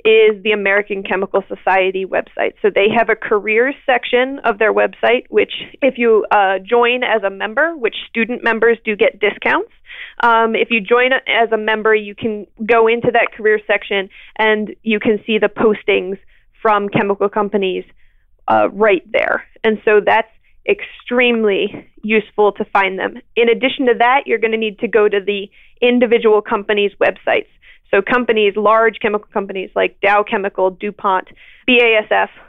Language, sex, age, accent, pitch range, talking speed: English, female, 30-49, American, 205-245 Hz, 165 wpm